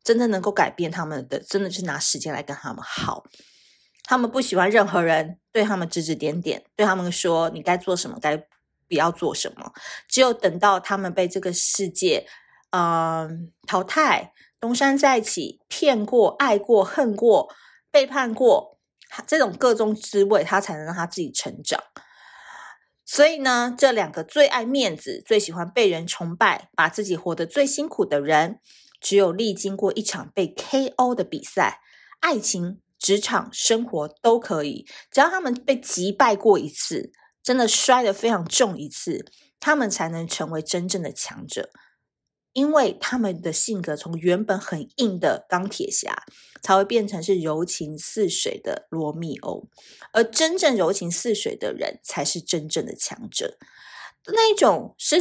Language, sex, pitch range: Chinese, female, 170-255 Hz